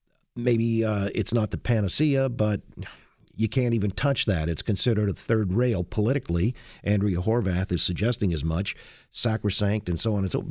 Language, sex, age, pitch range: English, male, 50-69, 100-125 Hz